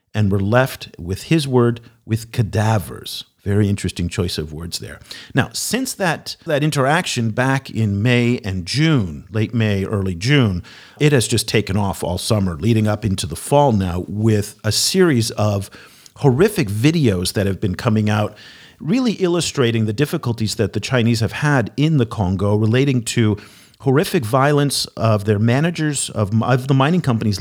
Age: 50-69